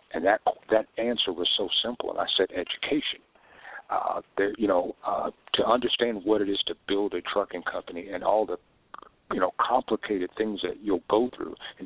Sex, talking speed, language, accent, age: male, 190 wpm, English, American, 50-69